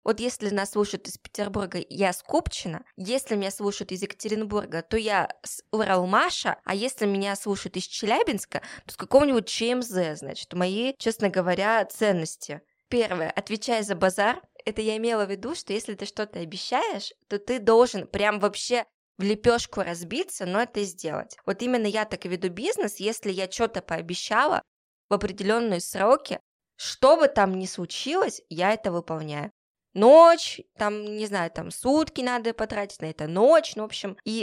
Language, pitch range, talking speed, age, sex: Russian, 185-225 Hz, 165 wpm, 20-39, female